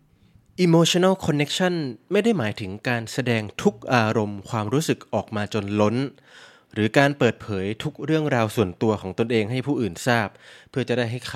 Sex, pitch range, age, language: male, 105-140 Hz, 20-39, Thai